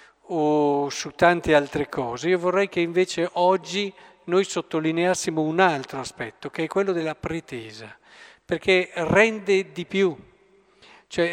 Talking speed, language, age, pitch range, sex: 125 wpm, Italian, 50-69, 145-190 Hz, male